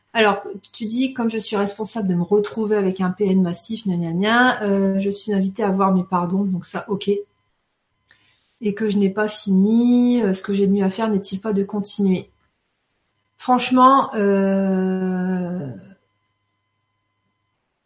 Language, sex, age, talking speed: French, female, 40-59, 150 wpm